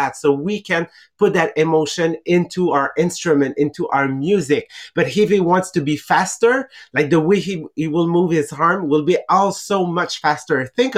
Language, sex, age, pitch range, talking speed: English, male, 30-49, 145-180 Hz, 185 wpm